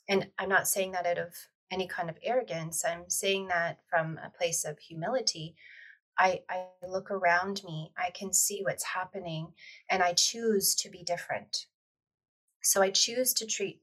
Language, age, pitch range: English, 30-49, 170-195 Hz